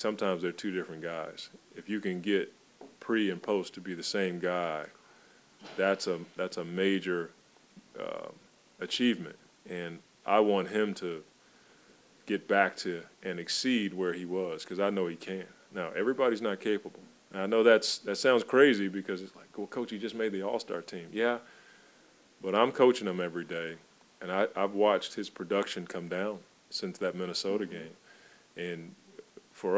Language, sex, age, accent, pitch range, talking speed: English, male, 30-49, American, 90-105 Hz, 175 wpm